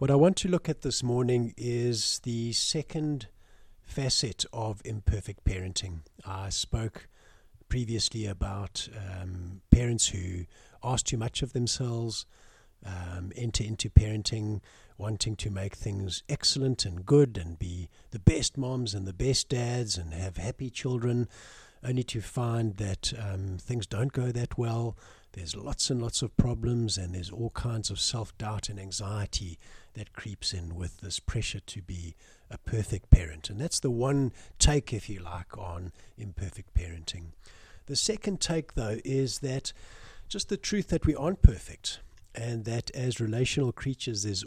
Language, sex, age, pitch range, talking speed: English, male, 60-79, 95-125 Hz, 155 wpm